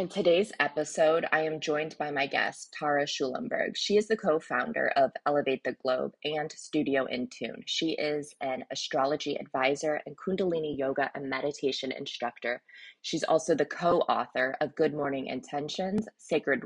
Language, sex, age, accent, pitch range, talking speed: English, female, 20-39, American, 135-170 Hz, 155 wpm